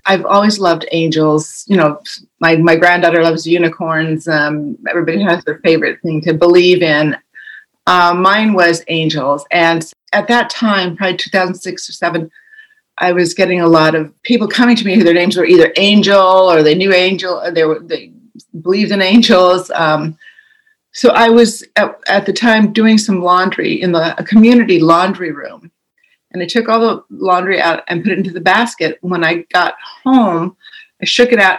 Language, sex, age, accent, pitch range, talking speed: English, female, 40-59, American, 165-200 Hz, 185 wpm